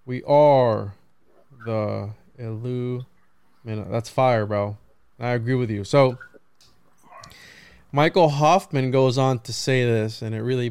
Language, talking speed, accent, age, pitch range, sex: English, 125 wpm, American, 20-39, 115-135 Hz, male